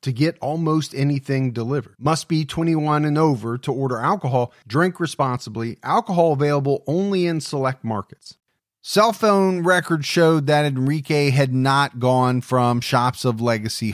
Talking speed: 145 wpm